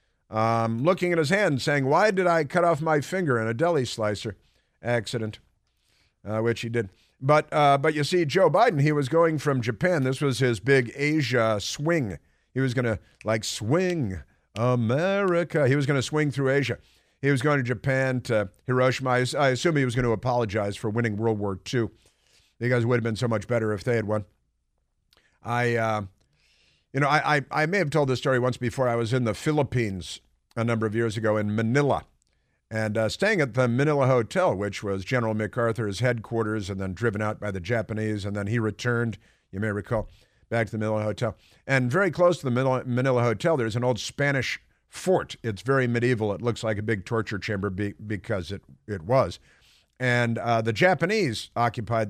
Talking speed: 200 wpm